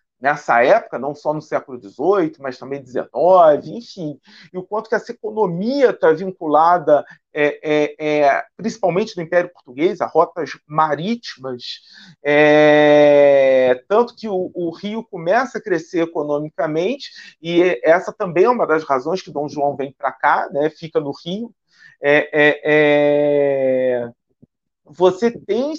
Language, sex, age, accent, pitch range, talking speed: Portuguese, male, 40-59, Brazilian, 145-190 Hz, 140 wpm